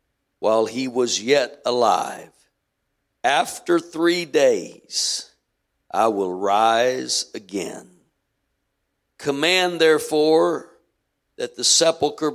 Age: 60-79